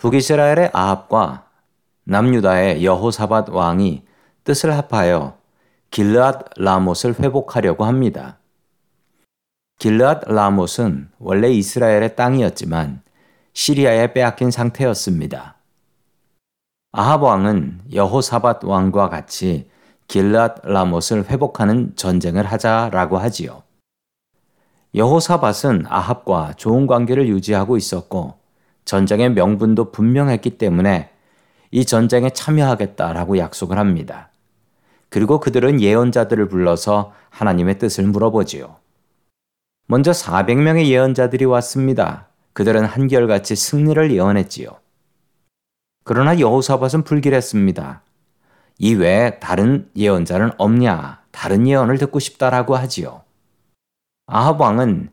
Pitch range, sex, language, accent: 100-130 Hz, male, Korean, native